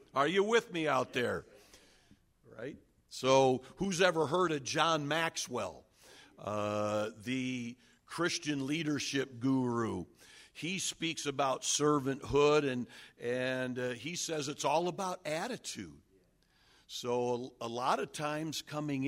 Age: 60-79